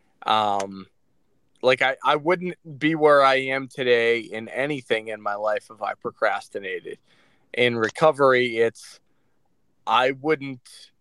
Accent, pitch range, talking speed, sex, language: American, 115-150 Hz, 125 wpm, male, English